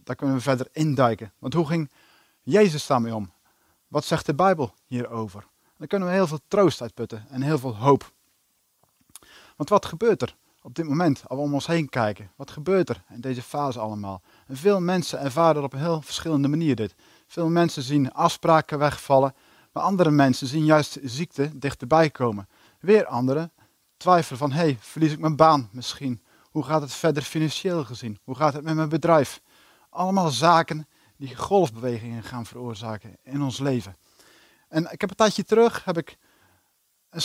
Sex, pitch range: male, 130-165 Hz